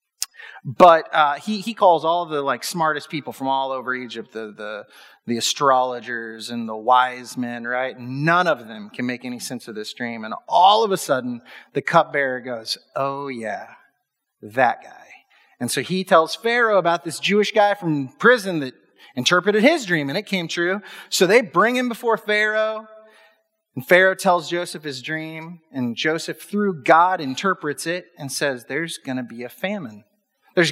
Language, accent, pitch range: English, American, 150-235 Hz